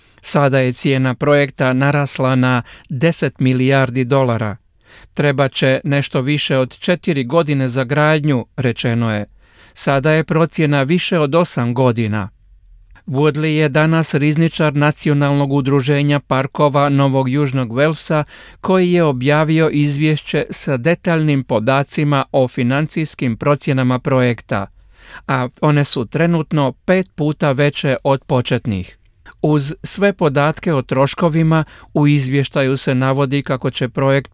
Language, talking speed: Croatian, 120 wpm